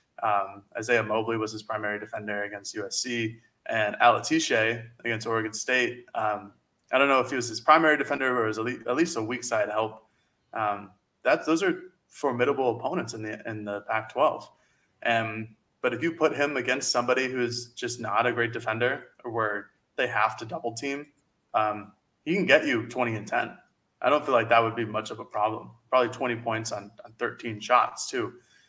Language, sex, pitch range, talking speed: English, male, 110-125 Hz, 190 wpm